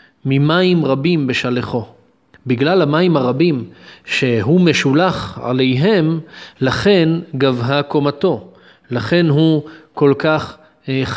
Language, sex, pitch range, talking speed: Hebrew, male, 130-175 Hz, 85 wpm